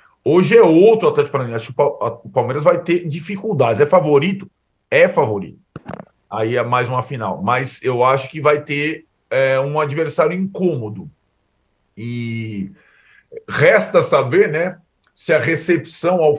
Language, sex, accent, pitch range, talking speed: Portuguese, male, Brazilian, 140-180 Hz, 140 wpm